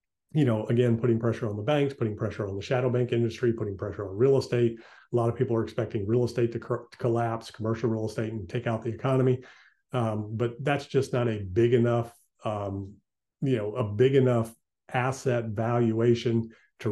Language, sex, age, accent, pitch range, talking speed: English, male, 40-59, American, 110-125 Hz, 200 wpm